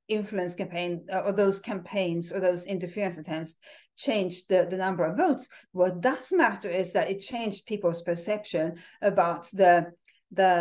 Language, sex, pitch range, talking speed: English, female, 180-235 Hz, 160 wpm